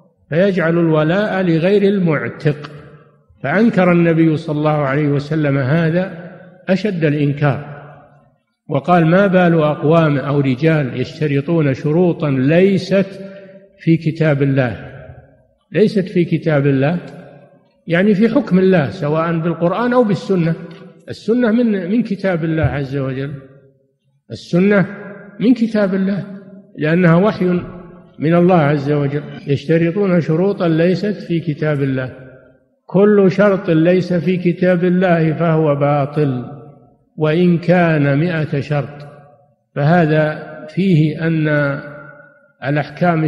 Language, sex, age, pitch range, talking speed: Arabic, male, 50-69, 145-180 Hz, 105 wpm